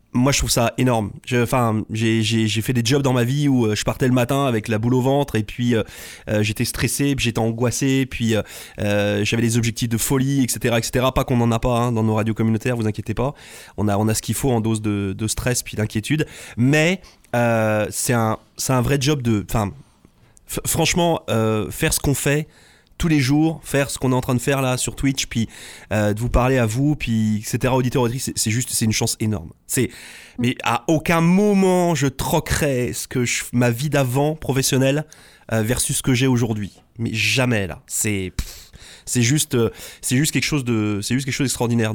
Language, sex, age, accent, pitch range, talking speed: French, male, 20-39, French, 115-140 Hz, 220 wpm